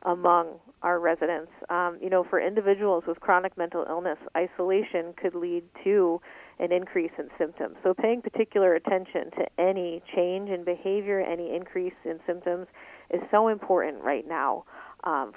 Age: 40-59